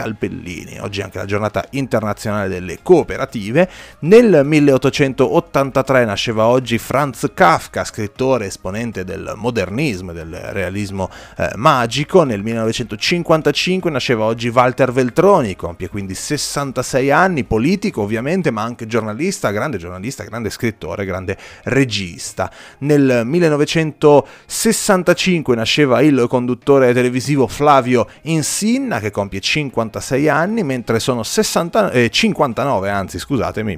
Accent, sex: native, male